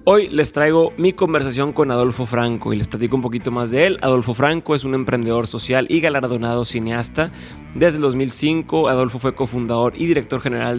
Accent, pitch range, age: Mexican, 120-150 Hz, 20-39